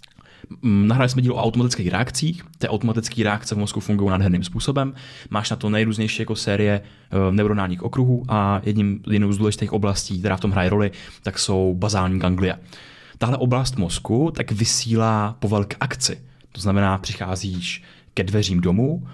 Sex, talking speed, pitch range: male, 160 wpm, 100-125 Hz